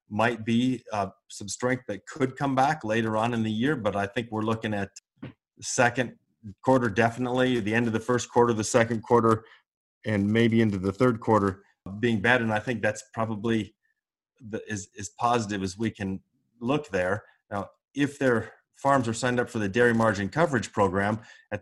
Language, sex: English, male